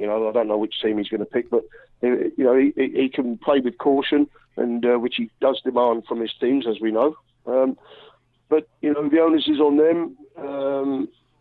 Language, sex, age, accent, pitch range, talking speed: English, male, 40-59, British, 120-140 Hz, 225 wpm